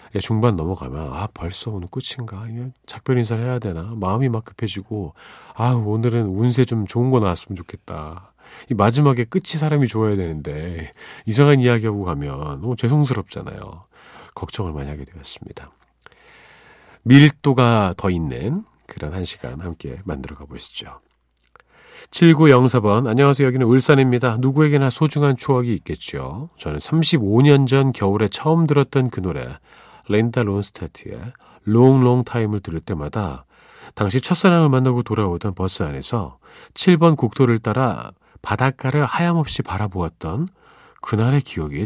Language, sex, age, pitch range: Korean, male, 40-59, 90-130 Hz